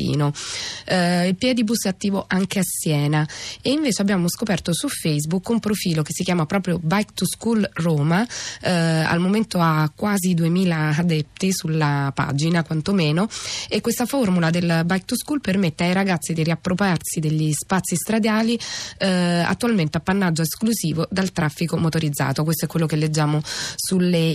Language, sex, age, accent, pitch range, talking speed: Italian, female, 20-39, native, 160-195 Hz, 155 wpm